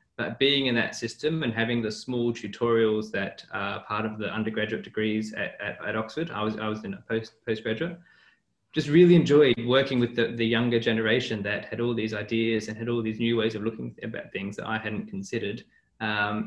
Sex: male